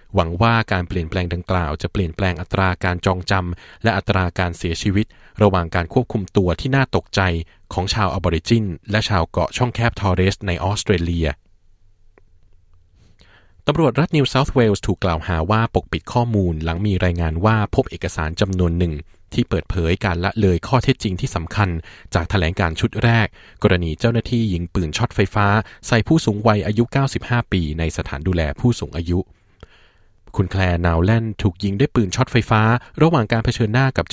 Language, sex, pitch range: Thai, male, 90-110 Hz